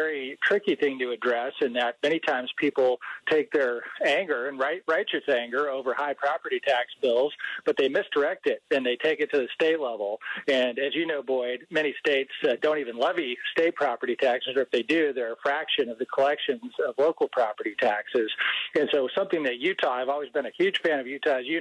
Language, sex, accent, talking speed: English, male, American, 215 wpm